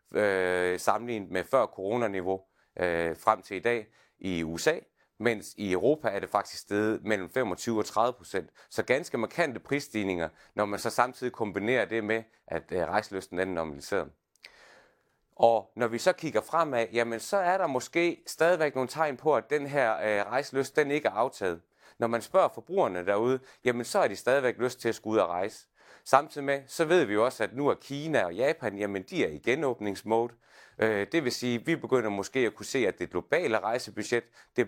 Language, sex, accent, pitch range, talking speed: Danish, male, native, 100-130 Hz, 195 wpm